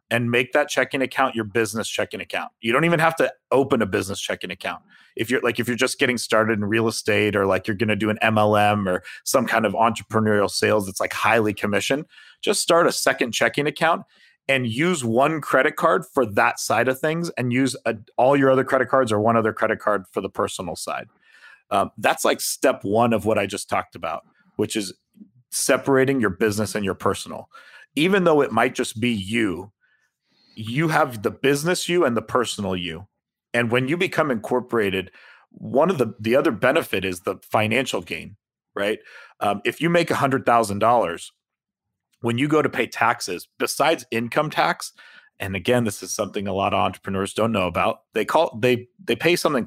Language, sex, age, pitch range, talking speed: English, male, 30-49, 105-135 Hz, 200 wpm